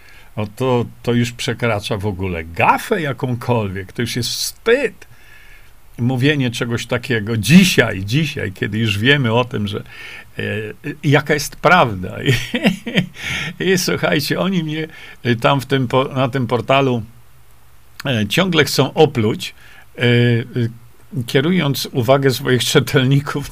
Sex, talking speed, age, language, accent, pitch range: male, 120 wpm, 50-69, Polish, native, 115-155 Hz